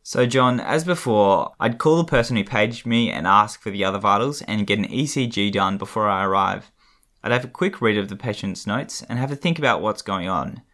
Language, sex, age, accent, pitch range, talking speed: English, male, 10-29, Australian, 105-135 Hz, 235 wpm